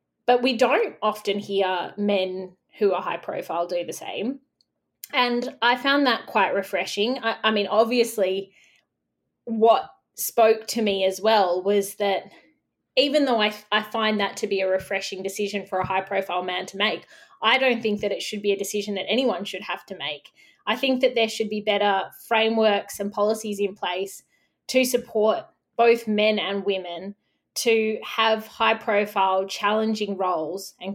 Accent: Australian